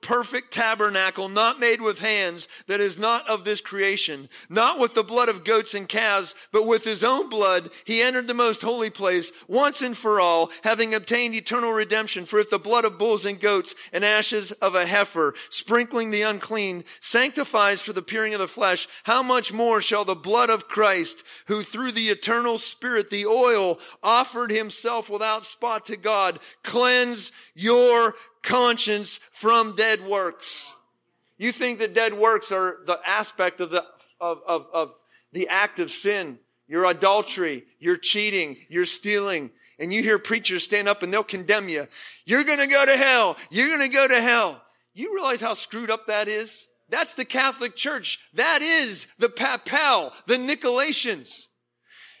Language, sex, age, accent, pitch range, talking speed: English, male, 40-59, American, 200-240 Hz, 170 wpm